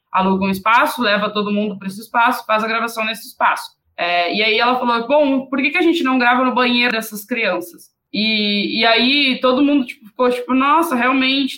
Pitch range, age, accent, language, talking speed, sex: 205-260 Hz, 20-39, Brazilian, Portuguese, 200 wpm, female